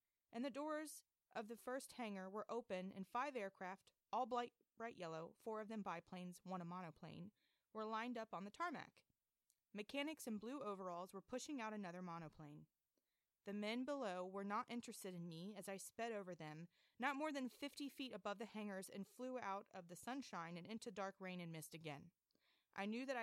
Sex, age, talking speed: female, 30-49, 190 wpm